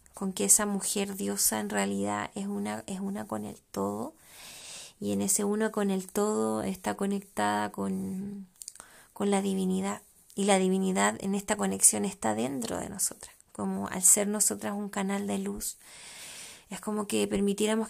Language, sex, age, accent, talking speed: Spanish, female, 20-39, Argentinian, 165 wpm